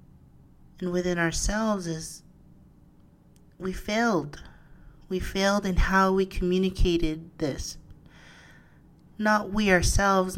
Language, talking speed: English, 95 wpm